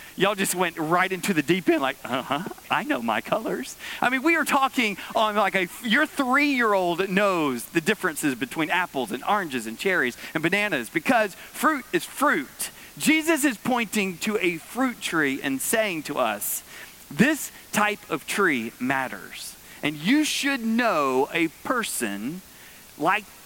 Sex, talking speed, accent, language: male, 160 wpm, American, English